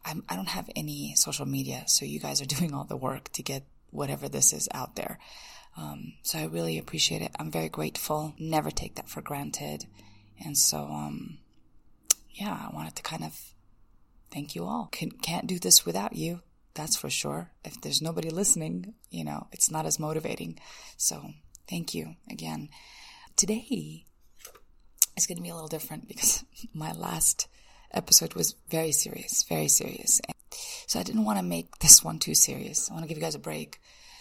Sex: female